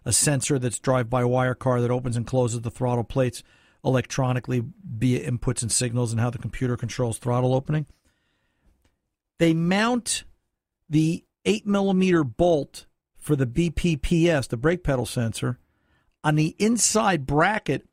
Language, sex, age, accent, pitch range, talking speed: English, male, 50-69, American, 125-175 Hz, 135 wpm